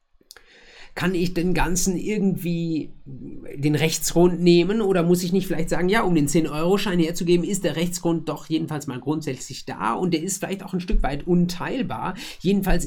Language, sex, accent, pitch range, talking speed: German, male, German, 125-170 Hz, 175 wpm